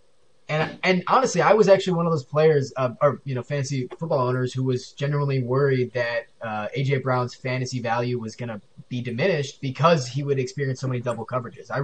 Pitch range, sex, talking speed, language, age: 125-150 Hz, male, 210 wpm, English, 20-39